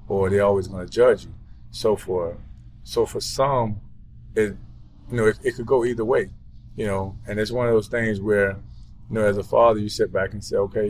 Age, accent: 20-39, American